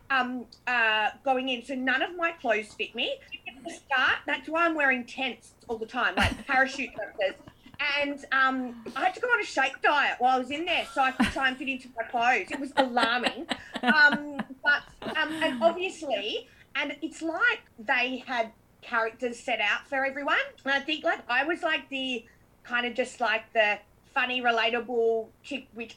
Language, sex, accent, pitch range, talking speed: English, female, Australian, 235-290 Hz, 190 wpm